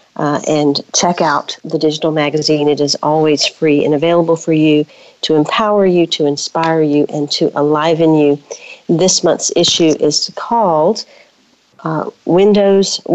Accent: American